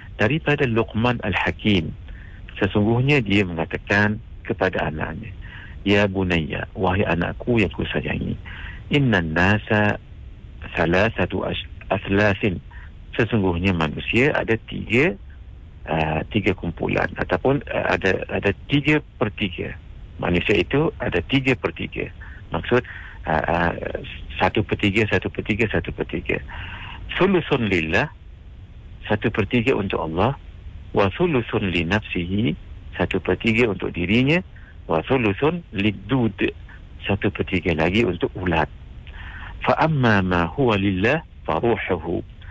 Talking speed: 115 wpm